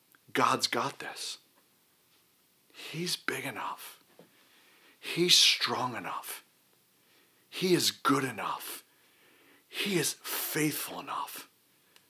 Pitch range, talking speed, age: 120-170 Hz, 85 wpm, 50-69